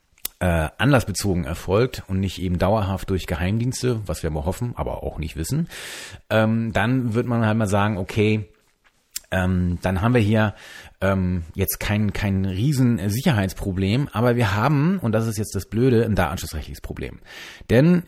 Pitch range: 95-125 Hz